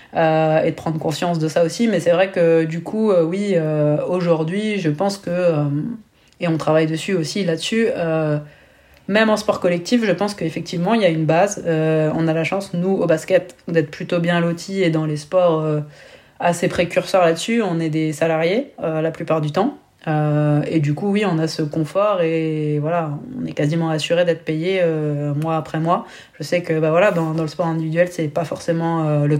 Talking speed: 215 wpm